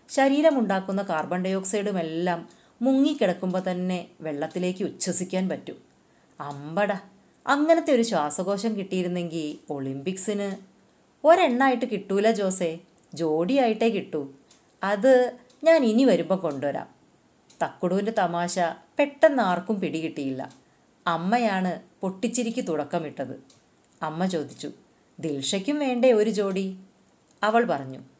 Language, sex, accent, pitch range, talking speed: Malayalam, female, native, 170-230 Hz, 85 wpm